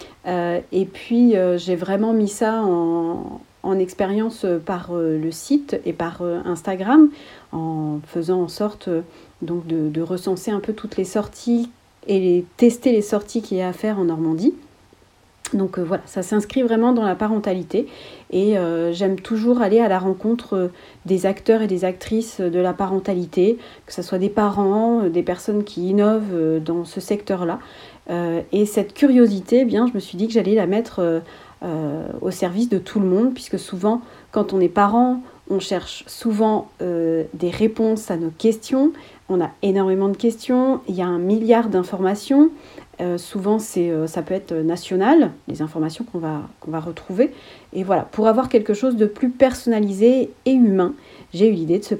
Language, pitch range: French, 175-220 Hz